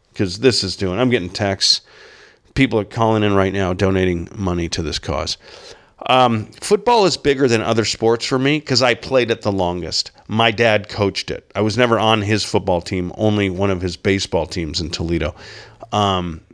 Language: English